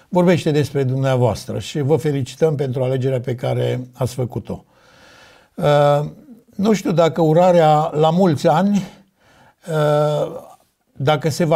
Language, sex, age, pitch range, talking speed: Romanian, male, 60-79, 140-175 Hz, 105 wpm